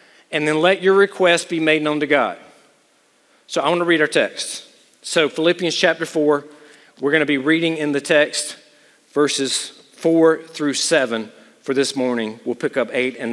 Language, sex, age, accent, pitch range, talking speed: English, male, 40-59, American, 140-175 Hz, 175 wpm